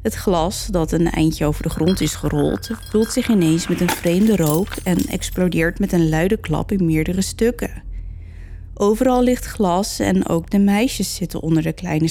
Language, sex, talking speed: Dutch, female, 185 wpm